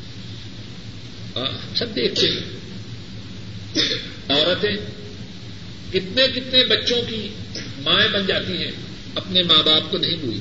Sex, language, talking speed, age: male, Urdu, 105 wpm, 50-69